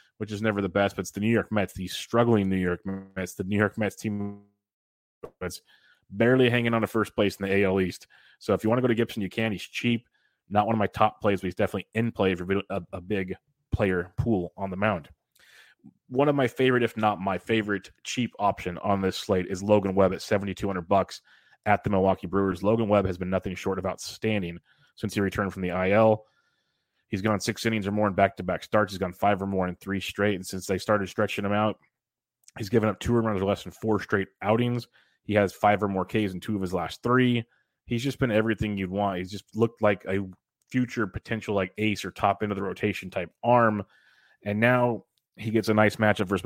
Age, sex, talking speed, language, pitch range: 20-39, male, 230 wpm, English, 95-110 Hz